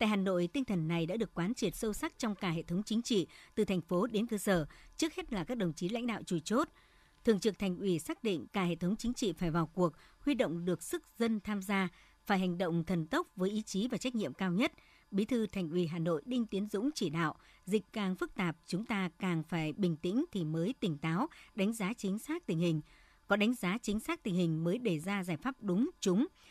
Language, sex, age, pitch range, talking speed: Vietnamese, male, 60-79, 175-225 Hz, 255 wpm